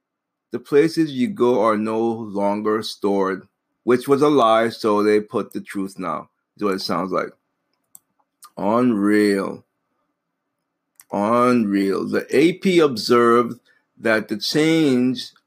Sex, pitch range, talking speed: male, 115-145 Hz, 120 wpm